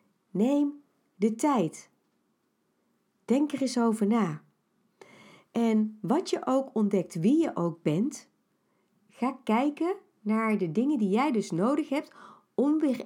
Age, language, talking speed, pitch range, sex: 40-59, Dutch, 135 wpm, 200-255 Hz, female